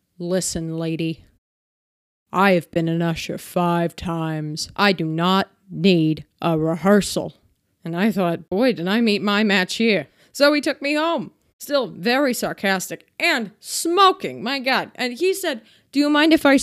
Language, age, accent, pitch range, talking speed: English, 30-49, American, 170-225 Hz, 160 wpm